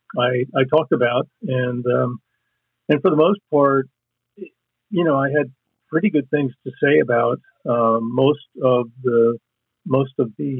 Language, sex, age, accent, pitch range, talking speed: English, male, 50-69, American, 115-140 Hz, 160 wpm